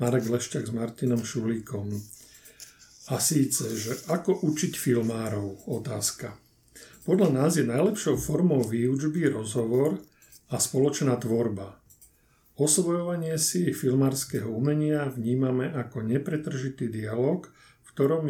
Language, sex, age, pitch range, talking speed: Slovak, male, 50-69, 120-140 Hz, 105 wpm